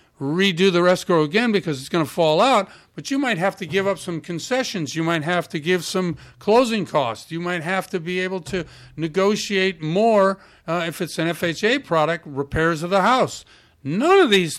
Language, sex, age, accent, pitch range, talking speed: English, male, 50-69, American, 145-190 Hz, 200 wpm